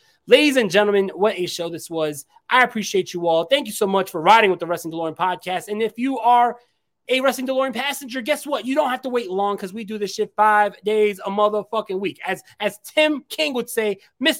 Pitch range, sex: 190-245 Hz, male